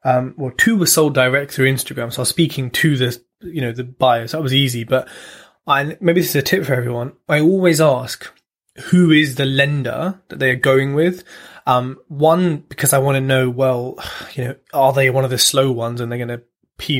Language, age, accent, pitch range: English, 20-39, British, 130-160 Hz